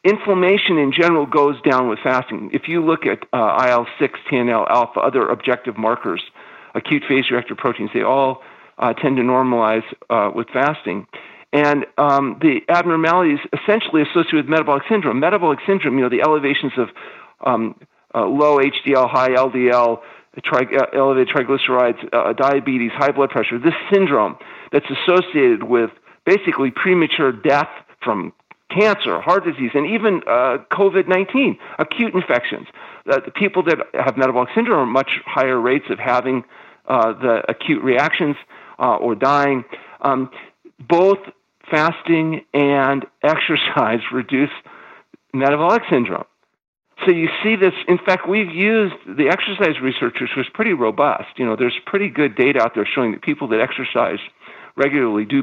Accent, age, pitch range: American, 50-69, 130-185 Hz